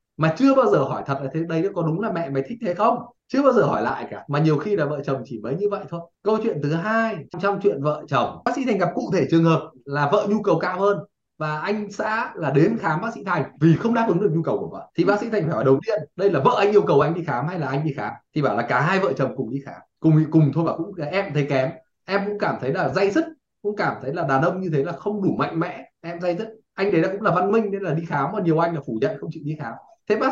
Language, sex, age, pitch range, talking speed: Vietnamese, male, 20-39, 155-210 Hz, 320 wpm